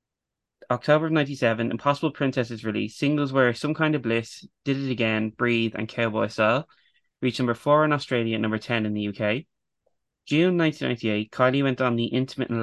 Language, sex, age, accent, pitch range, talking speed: English, male, 20-39, Irish, 110-135 Hz, 180 wpm